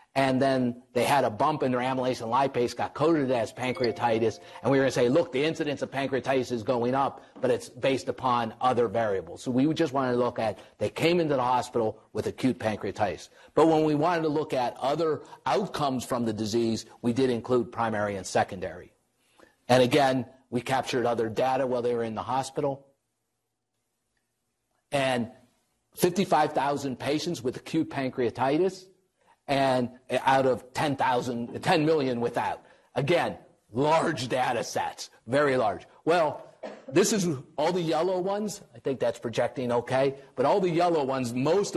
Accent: American